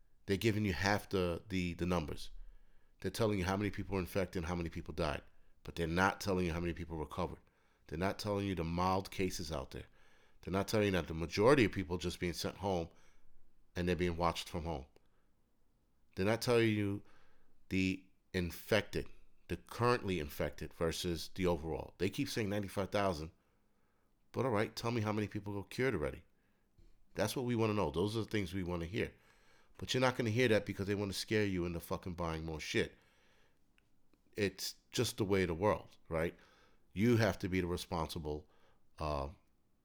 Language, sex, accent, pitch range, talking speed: English, male, American, 85-105 Hz, 200 wpm